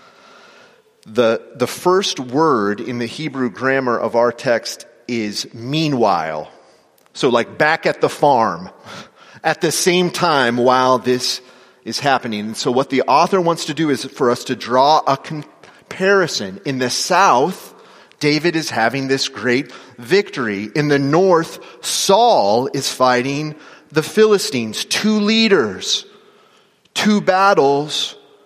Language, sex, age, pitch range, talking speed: English, male, 30-49, 130-180 Hz, 130 wpm